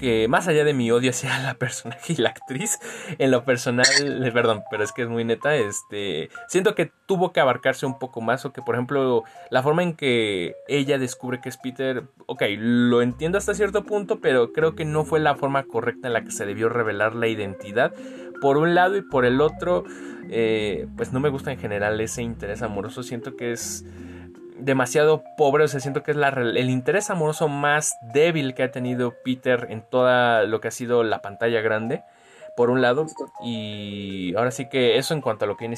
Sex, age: male, 20-39